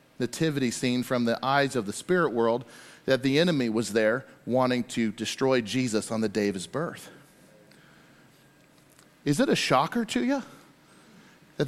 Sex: male